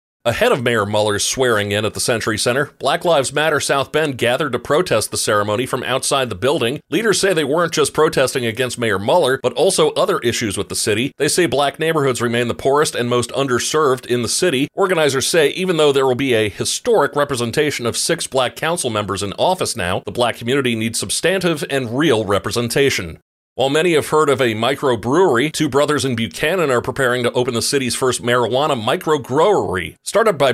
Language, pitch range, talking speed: English, 115-145 Hz, 200 wpm